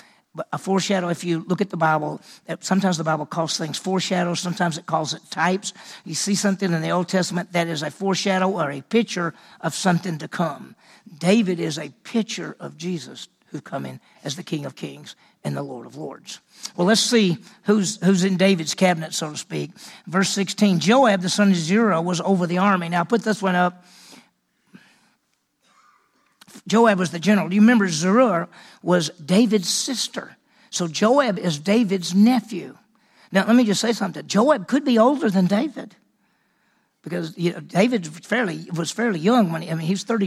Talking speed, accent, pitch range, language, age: 185 wpm, American, 170-210 Hz, English, 50-69